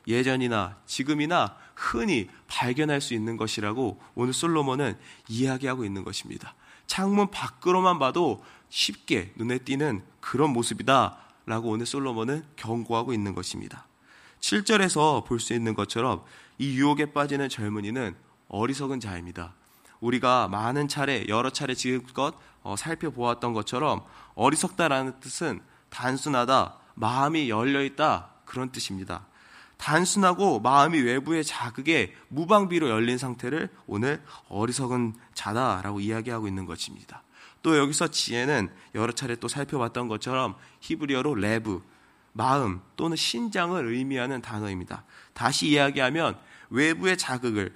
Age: 20-39